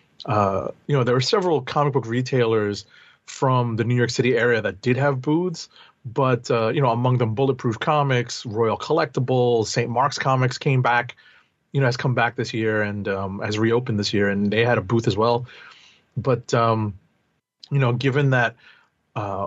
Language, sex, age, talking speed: English, male, 30-49, 190 wpm